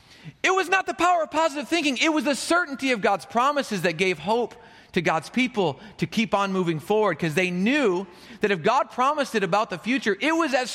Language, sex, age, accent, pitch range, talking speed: English, male, 40-59, American, 160-245 Hz, 225 wpm